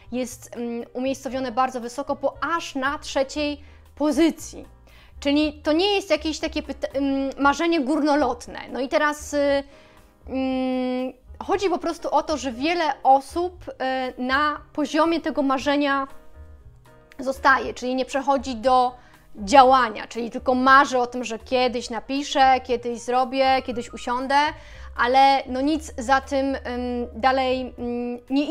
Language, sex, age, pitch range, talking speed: Polish, female, 20-39, 255-295 Hz, 135 wpm